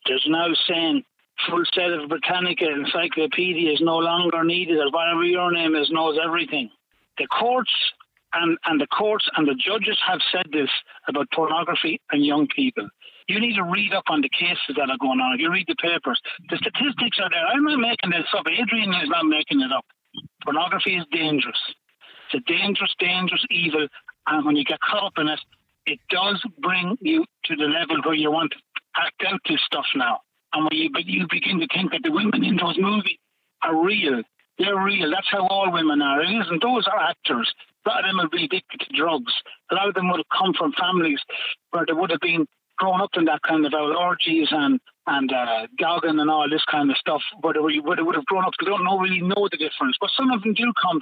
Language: English